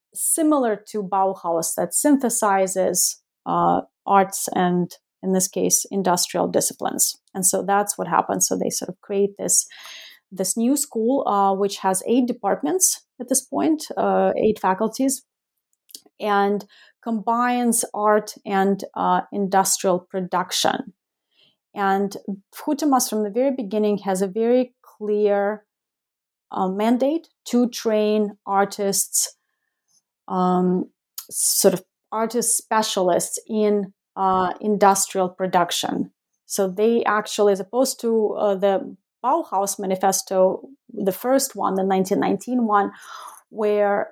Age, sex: 30-49, female